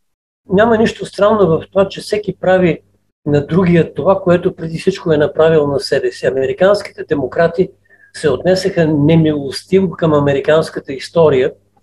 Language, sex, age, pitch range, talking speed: Bulgarian, male, 50-69, 145-185 Hz, 135 wpm